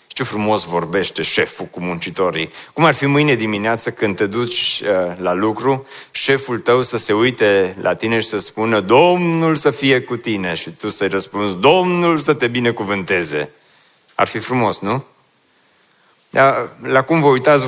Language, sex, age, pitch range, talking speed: Romanian, male, 30-49, 115-150 Hz, 165 wpm